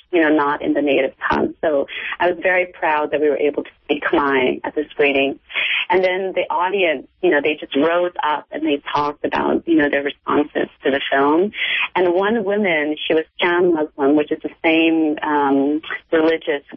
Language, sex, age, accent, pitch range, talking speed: English, female, 30-49, American, 150-190 Hz, 200 wpm